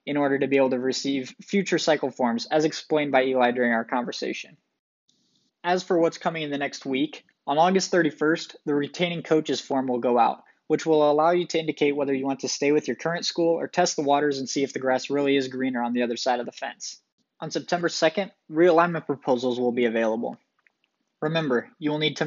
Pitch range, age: 130-160 Hz, 20-39